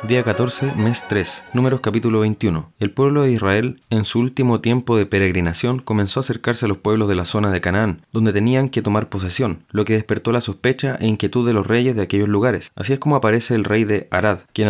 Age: 20-39